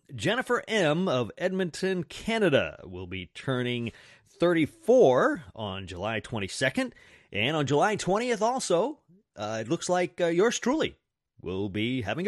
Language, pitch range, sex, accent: English, 100-155 Hz, male, American